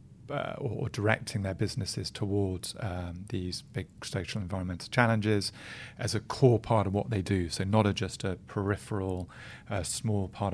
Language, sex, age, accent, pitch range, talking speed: English, male, 30-49, British, 95-120 Hz, 160 wpm